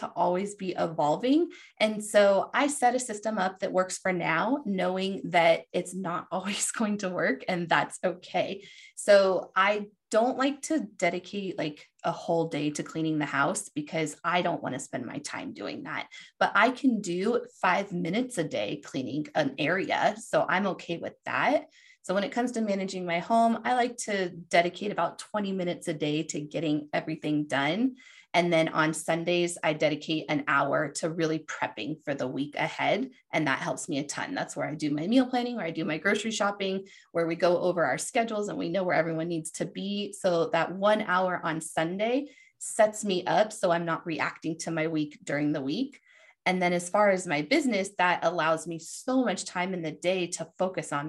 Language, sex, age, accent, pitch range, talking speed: English, female, 20-39, American, 155-205 Hz, 205 wpm